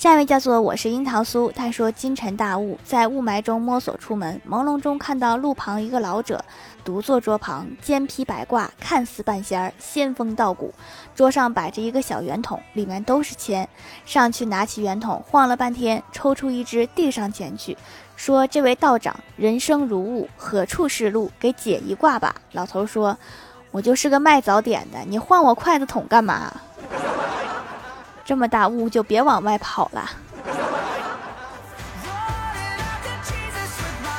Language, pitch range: Chinese, 210-265 Hz